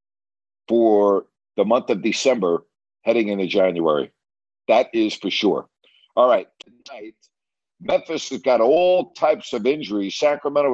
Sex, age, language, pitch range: male, 60-79, English, 105-145 Hz